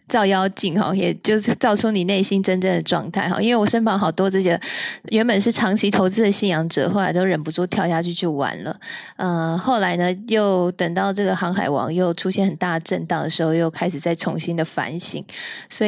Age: 20-39